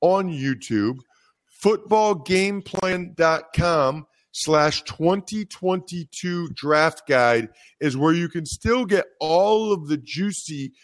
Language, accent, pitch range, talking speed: English, American, 150-195 Hz, 95 wpm